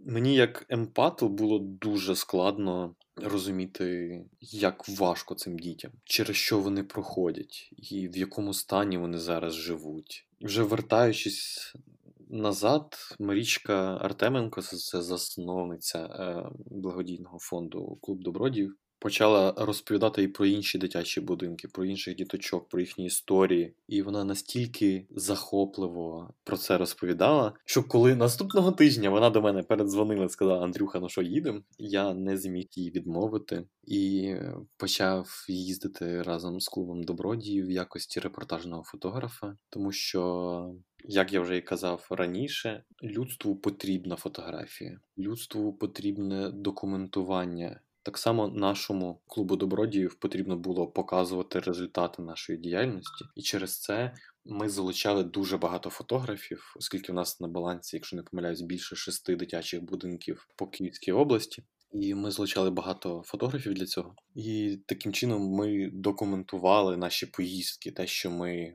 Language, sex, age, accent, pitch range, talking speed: Ukrainian, male, 20-39, native, 90-100 Hz, 130 wpm